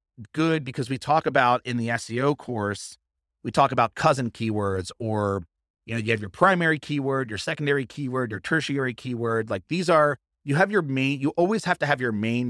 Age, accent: 30-49, American